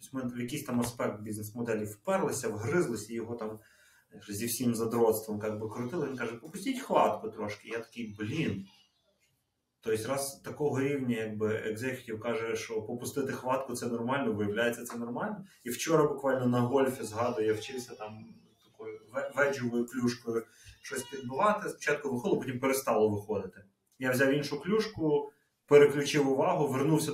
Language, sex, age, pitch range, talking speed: Ukrainian, male, 30-49, 110-140 Hz, 140 wpm